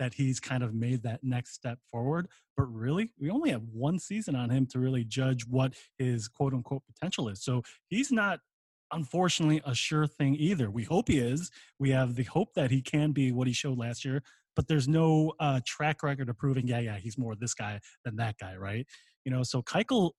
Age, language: 20-39, English